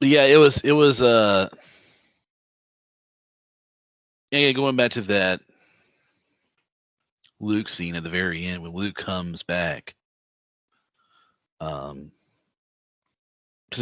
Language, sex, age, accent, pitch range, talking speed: English, male, 40-59, American, 85-100 Hz, 95 wpm